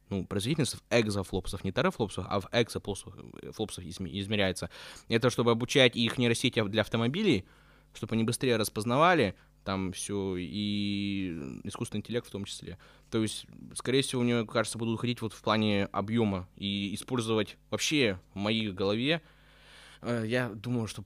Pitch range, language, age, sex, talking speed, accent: 105-125 Hz, Russian, 20-39, male, 140 wpm, native